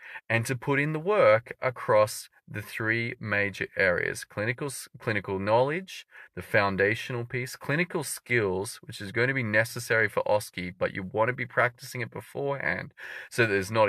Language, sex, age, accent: English, male, 30-49, Australian